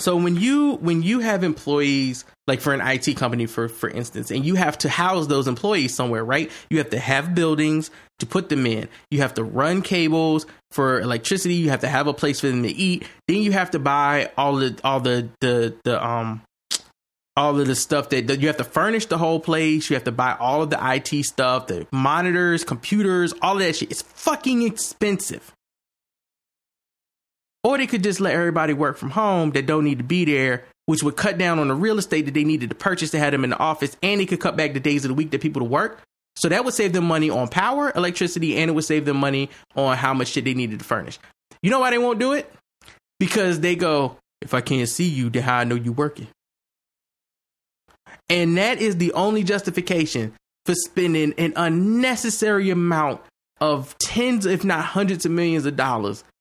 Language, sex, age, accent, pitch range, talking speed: English, male, 20-39, American, 135-180 Hz, 220 wpm